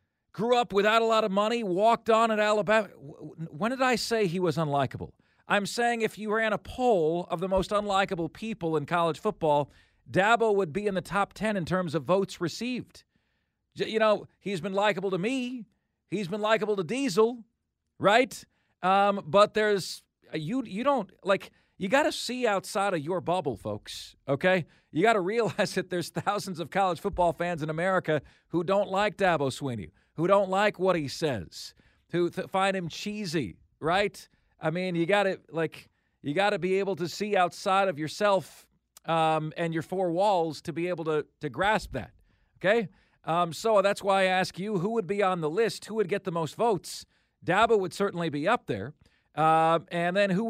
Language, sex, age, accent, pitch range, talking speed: English, male, 40-59, American, 160-205 Hz, 195 wpm